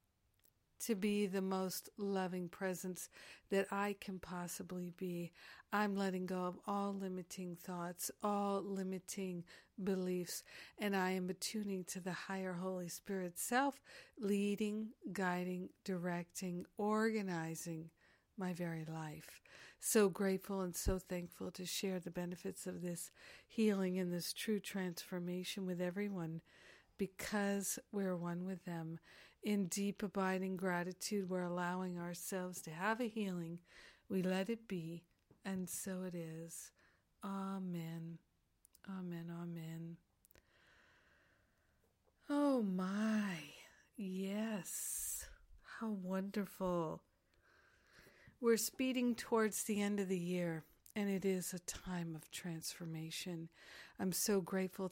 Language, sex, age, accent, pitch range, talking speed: English, female, 50-69, American, 175-200 Hz, 115 wpm